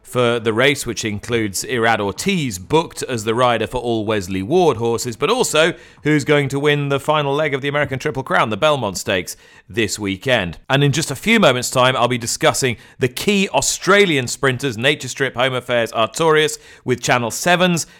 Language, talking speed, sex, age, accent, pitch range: English, 190 wpm, male, 40-59, British, 115-150 Hz